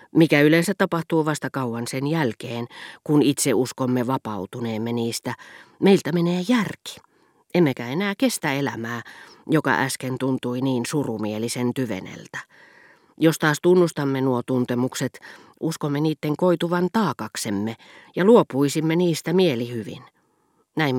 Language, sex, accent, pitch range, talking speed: Finnish, female, native, 125-170 Hz, 110 wpm